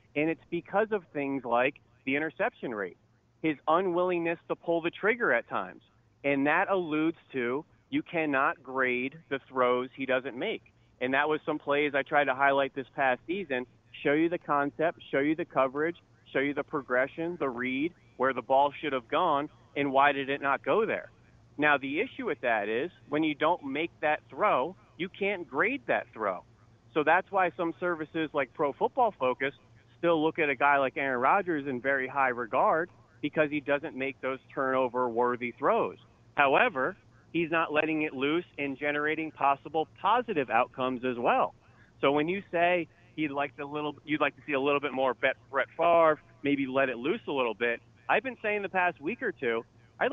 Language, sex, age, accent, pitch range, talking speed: English, male, 30-49, American, 130-160 Hz, 190 wpm